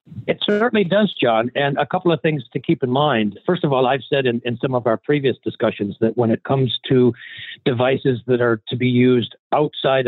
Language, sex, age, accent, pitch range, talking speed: English, male, 50-69, American, 105-130 Hz, 220 wpm